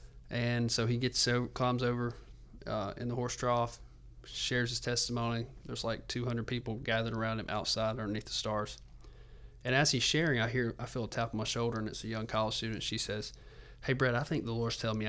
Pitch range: 110-125 Hz